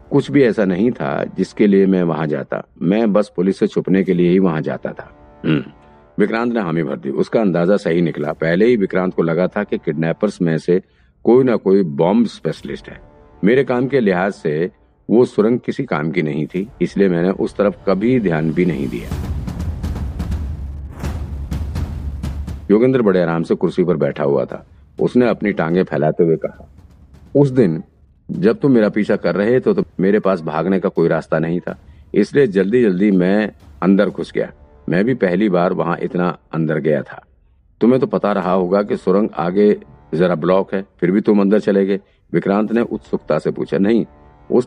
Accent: native